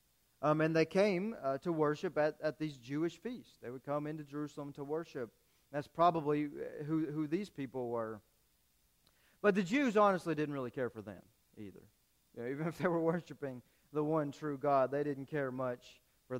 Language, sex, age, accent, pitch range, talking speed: English, male, 40-59, American, 125-170 Hz, 190 wpm